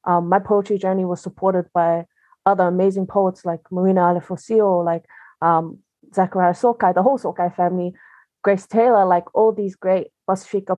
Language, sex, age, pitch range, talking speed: English, female, 20-39, 175-200 Hz, 155 wpm